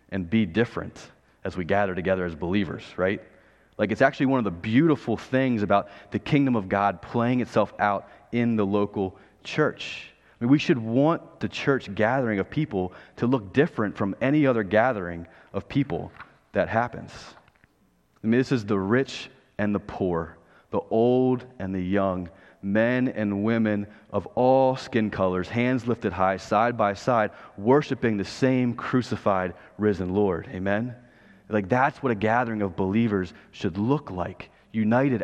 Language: English